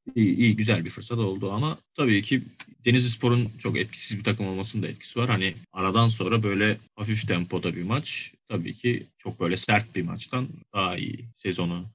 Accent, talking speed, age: native, 185 wpm, 30-49